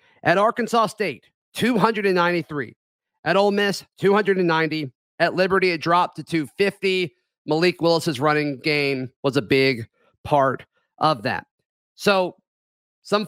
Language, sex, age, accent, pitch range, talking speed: English, male, 40-59, American, 145-195 Hz, 115 wpm